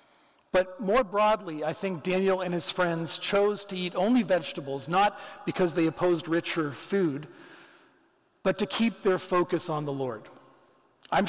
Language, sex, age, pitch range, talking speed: English, male, 40-59, 160-195 Hz, 155 wpm